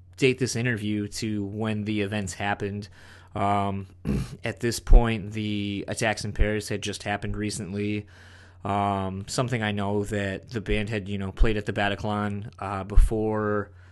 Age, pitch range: 20-39, 95-110 Hz